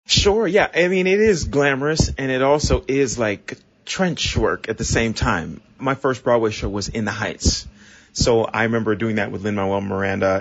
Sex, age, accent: male, 30-49, American